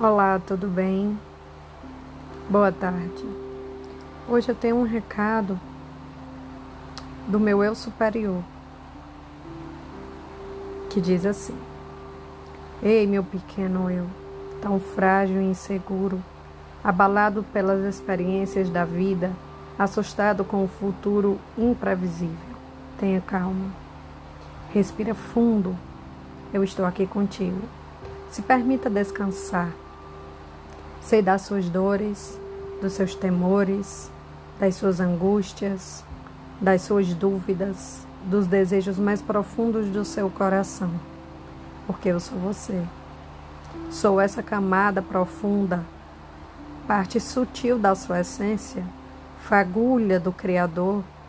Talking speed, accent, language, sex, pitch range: 95 wpm, Brazilian, Portuguese, female, 165-200 Hz